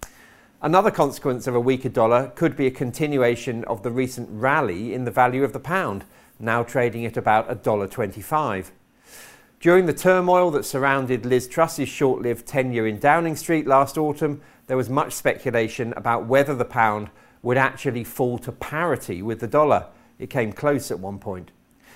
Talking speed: 165 wpm